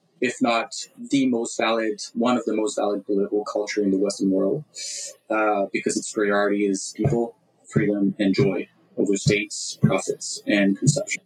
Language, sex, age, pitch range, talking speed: English, male, 20-39, 105-140 Hz, 160 wpm